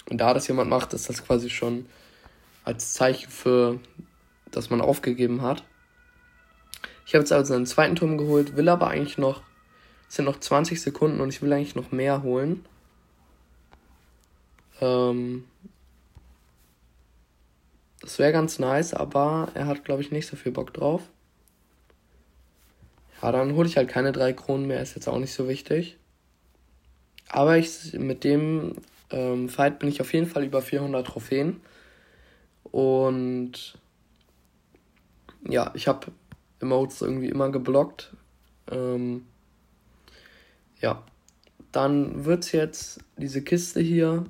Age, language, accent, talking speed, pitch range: 20-39, German, German, 135 wpm, 120-150 Hz